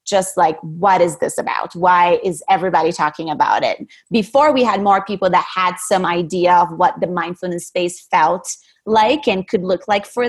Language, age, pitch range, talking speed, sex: English, 20-39, 180-220 Hz, 190 wpm, female